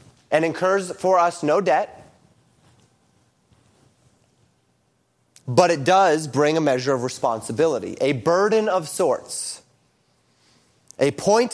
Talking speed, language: 105 wpm, English